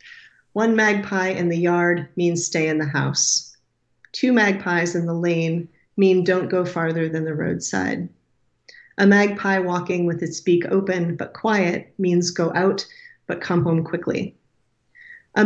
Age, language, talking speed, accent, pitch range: 40-59, English, 150 wpm, American, 165-195 Hz